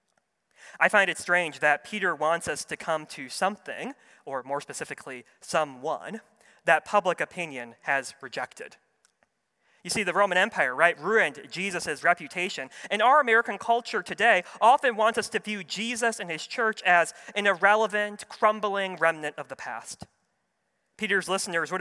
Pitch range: 155-220 Hz